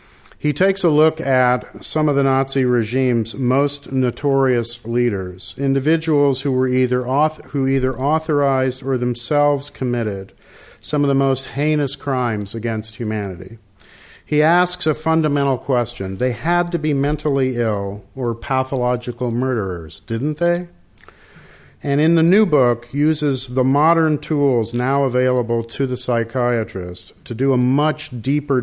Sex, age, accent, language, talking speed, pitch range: male, 50-69, American, English, 140 wpm, 110-140 Hz